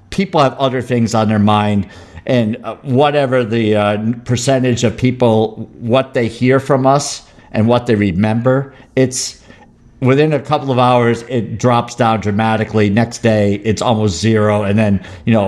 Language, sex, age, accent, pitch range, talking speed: English, male, 50-69, American, 110-145 Hz, 165 wpm